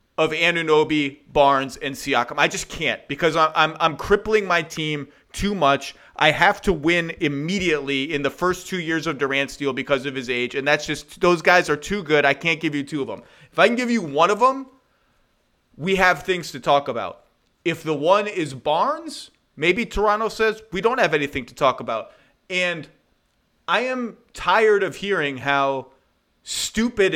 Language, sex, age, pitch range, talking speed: English, male, 30-49, 155-210 Hz, 190 wpm